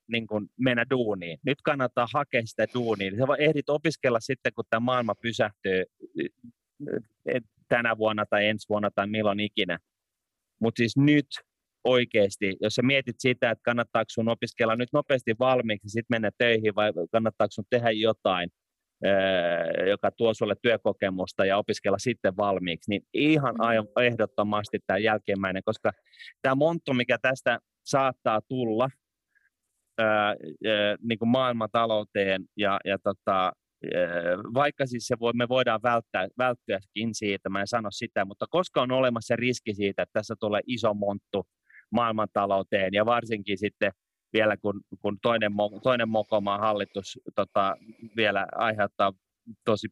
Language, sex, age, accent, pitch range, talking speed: Finnish, male, 30-49, native, 100-125 Hz, 135 wpm